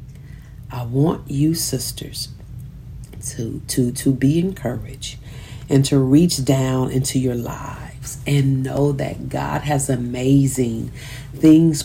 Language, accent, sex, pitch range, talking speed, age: English, American, female, 130-150 Hz, 115 wpm, 40-59